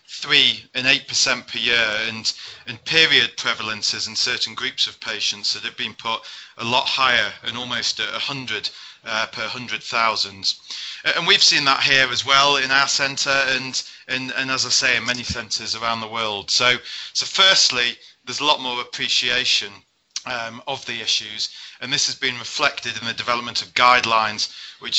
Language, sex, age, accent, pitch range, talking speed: English, male, 30-49, British, 115-135 Hz, 175 wpm